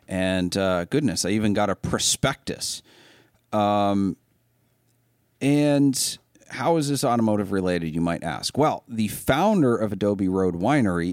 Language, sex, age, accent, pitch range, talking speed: English, male, 40-59, American, 90-120 Hz, 135 wpm